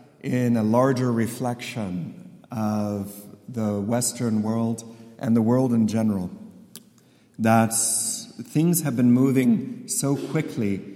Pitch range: 115-140 Hz